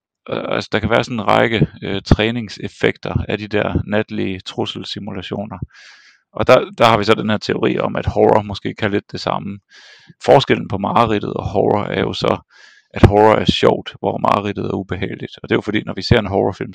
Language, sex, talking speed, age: Danish, male, 205 wpm, 40-59